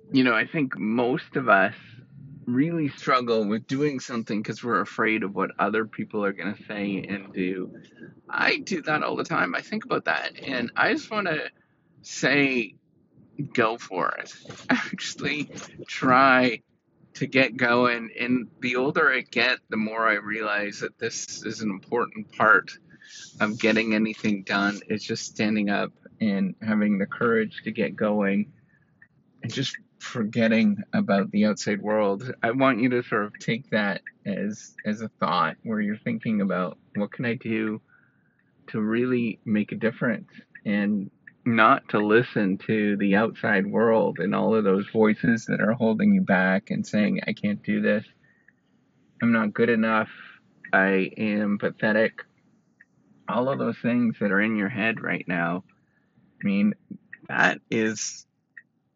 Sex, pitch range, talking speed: male, 105-140 Hz, 160 wpm